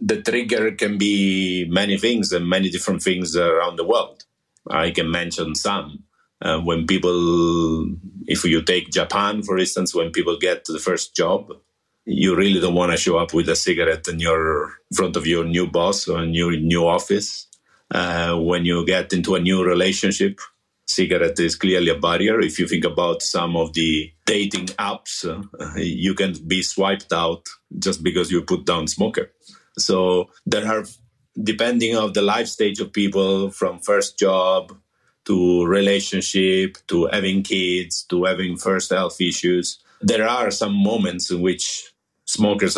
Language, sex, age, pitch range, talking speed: English, male, 50-69, 85-100 Hz, 165 wpm